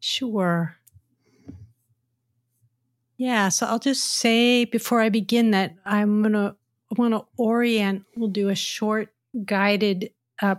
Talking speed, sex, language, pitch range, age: 125 wpm, female, English, 180-215 Hz, 40-59